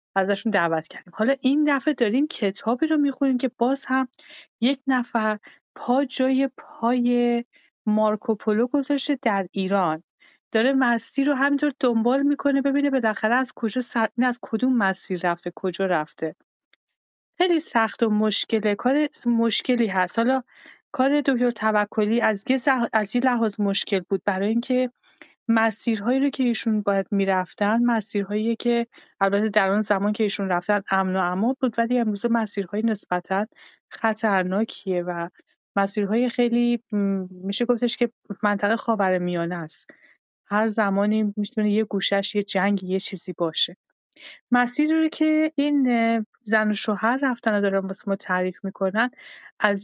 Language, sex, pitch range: Persian, female, 200-255 Hz